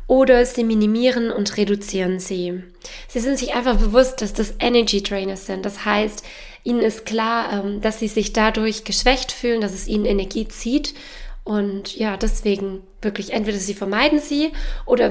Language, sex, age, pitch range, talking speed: German, female, 20-39, 200-250 Hz, 165 wpm